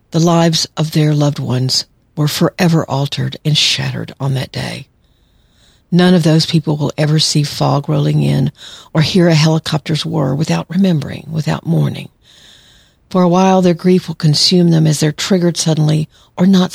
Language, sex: English, female